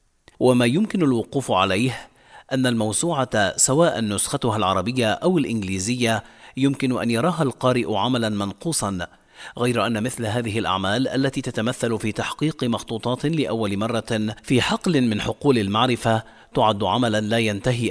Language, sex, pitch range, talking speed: Arabic, male, 105-130 Hz, 125 wpm